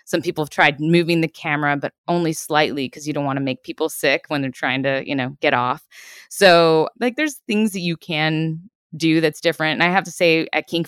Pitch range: 140-165 Hz